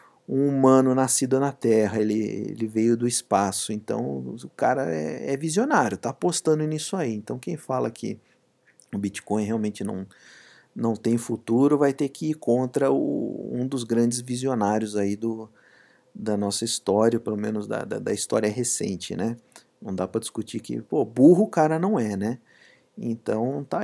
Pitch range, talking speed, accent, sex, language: 100-135 Hz, 170 wpm, Brazilian, male, Portuguese